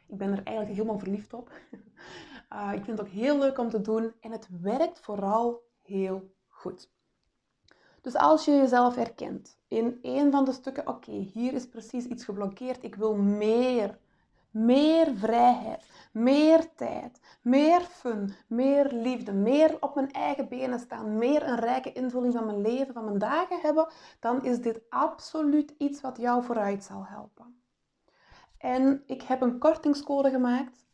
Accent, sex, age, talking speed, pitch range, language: Dutch, female, 20-39, 160 wpm, 215-270 Hz, Dutch